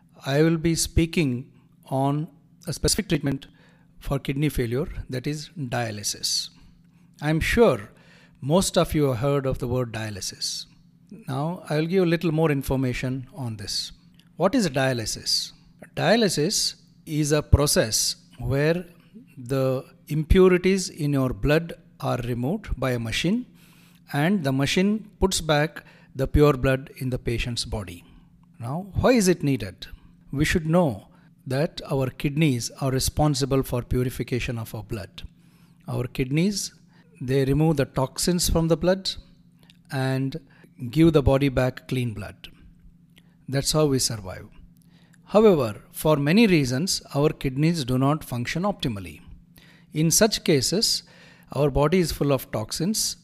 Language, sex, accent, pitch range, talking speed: English, male, Indian, 130-170 Hz, 140 wpm